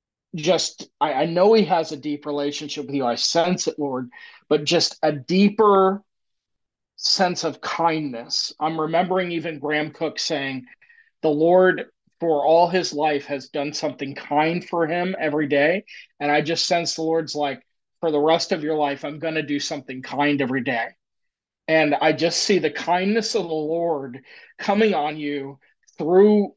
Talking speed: 170 wpm